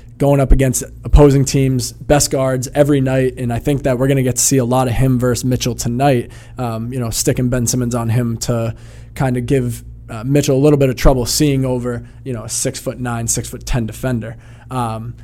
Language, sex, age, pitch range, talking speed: English, male, 20-39, 120-140 Hz, 225 wpm